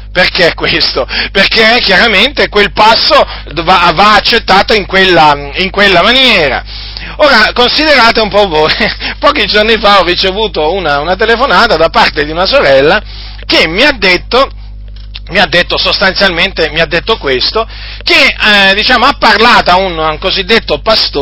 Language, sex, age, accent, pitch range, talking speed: Italian, male, 40-59, native, 175-250 Hz, 135 wpm